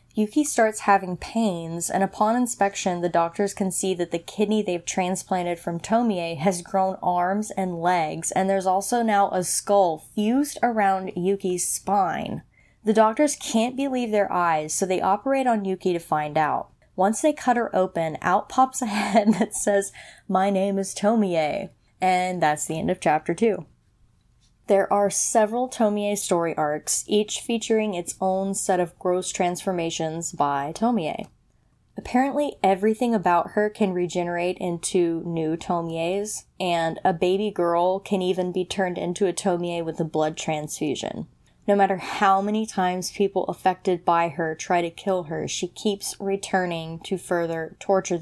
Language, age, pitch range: English, 20-39, 175-210 Hz